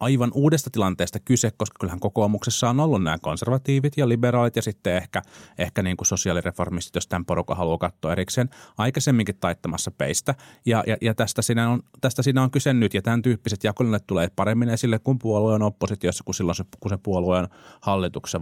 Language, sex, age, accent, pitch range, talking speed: Finnish, male, 30-49, native, 90-120 Hz, 185 wpm